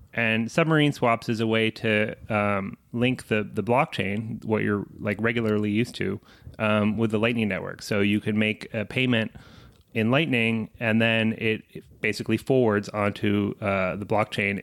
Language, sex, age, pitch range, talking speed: English, male, 30-49, 105-120 Hz, 170 wpm